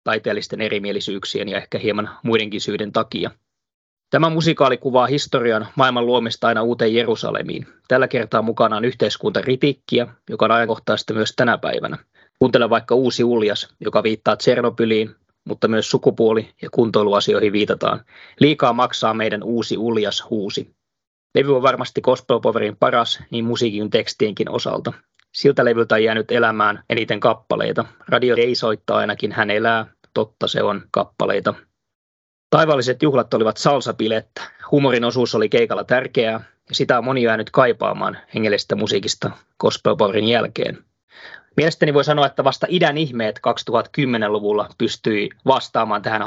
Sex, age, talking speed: male, 20-39, 135 wpm